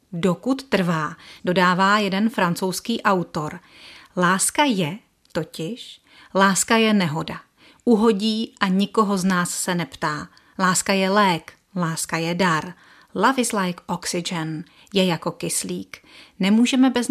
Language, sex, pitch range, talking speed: Czech, female, 175-230 Hz, 120 wpm